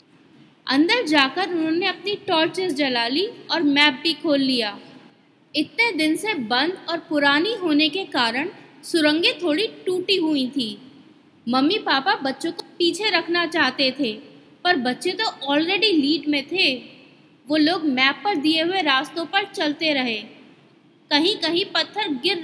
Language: Hindi